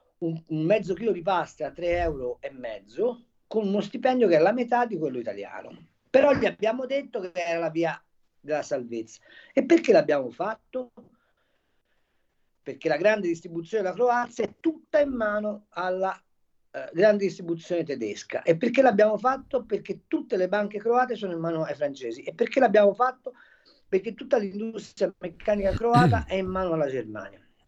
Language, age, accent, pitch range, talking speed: Italian, 40-59, native, 165-235 Hz, 165 wpm